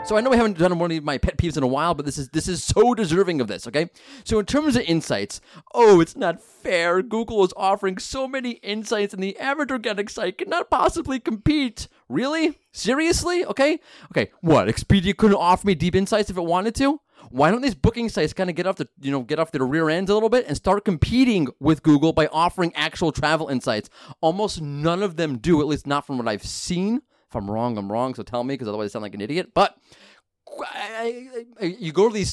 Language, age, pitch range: English, 30-49, 145-215 Hz